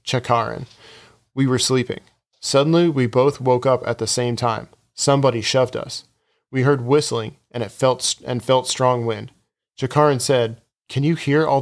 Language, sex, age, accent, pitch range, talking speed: English, male, 40-59, American, 120-140 Hz, 165 wpm